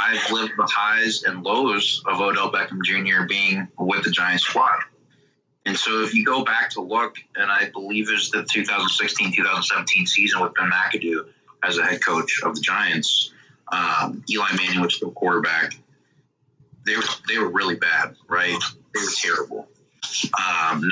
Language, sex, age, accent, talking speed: English, male, 30-49, American, 165 wpm